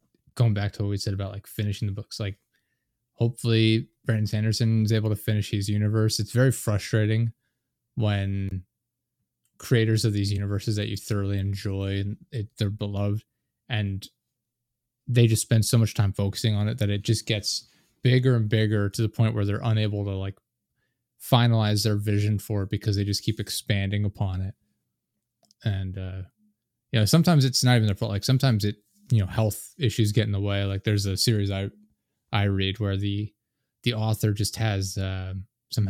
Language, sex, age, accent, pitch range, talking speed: English, male, 20-39, American, 105-120 Hz, 185 wpm